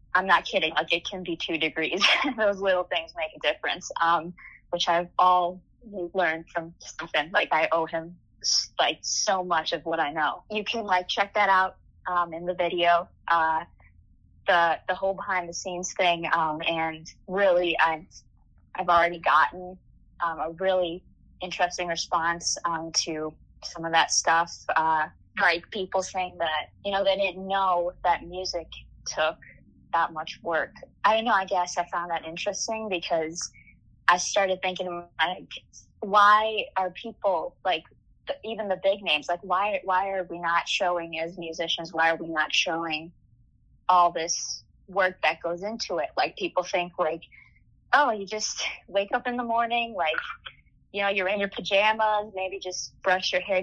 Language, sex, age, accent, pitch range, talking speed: English, female, 20-39, American, 165-190 Hz, 170 wpm